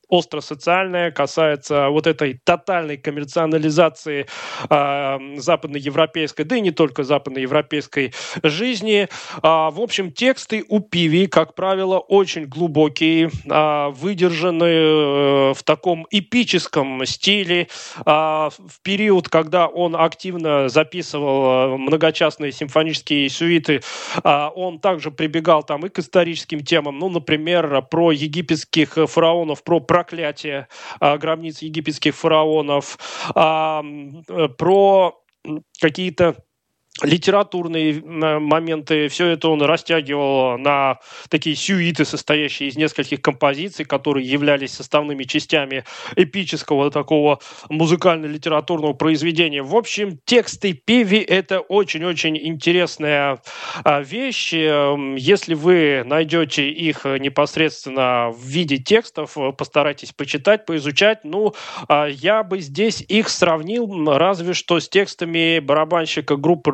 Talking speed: 105 wpm